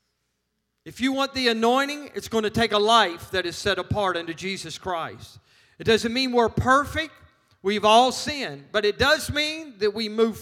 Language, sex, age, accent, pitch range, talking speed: English, male, 50-69, American, 185-245 Hz, 190 wpm